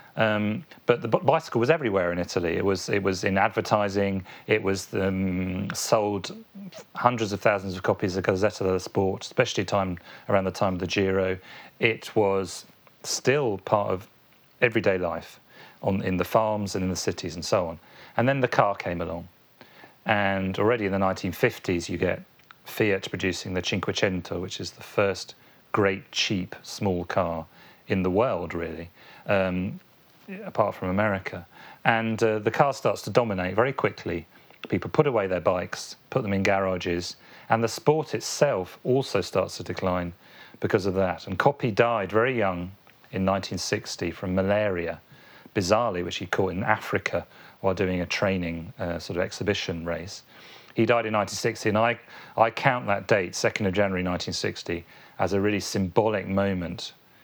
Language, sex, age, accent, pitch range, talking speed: English, male, 40-59, British, 90-110 Hz, 165 wpm